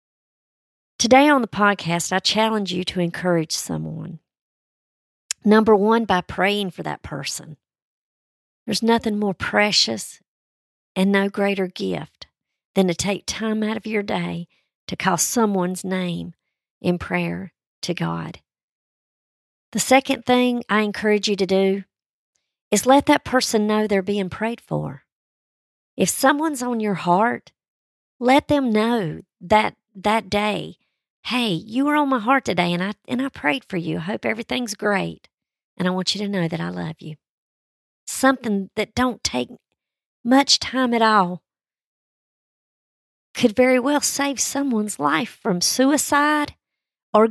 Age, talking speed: 50-69, 145 wpm